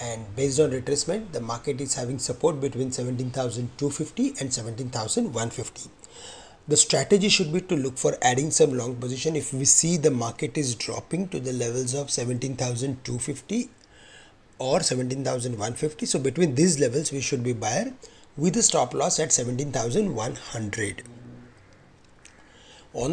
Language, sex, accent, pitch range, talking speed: English, male, Indian, 120-150 Hz, 140 wpm